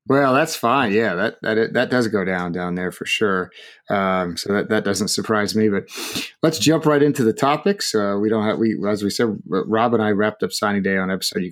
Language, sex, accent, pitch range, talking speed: English, male, American, 105-145 Hz, 240 wpm